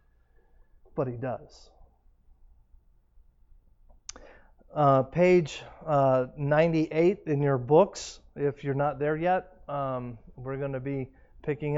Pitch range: 130-155 Hz